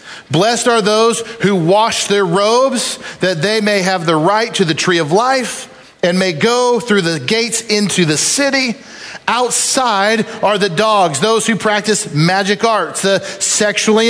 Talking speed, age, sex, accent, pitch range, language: 160 wpm, 40-59, male, American, 175-235 Hz, English